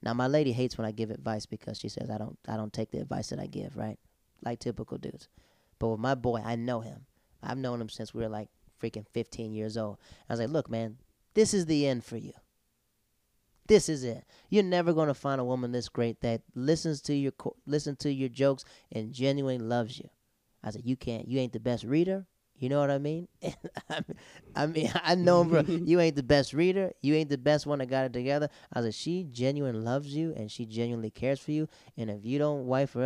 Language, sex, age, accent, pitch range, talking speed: English, male, 20-39, American, 115-150 Hz, 240 wpm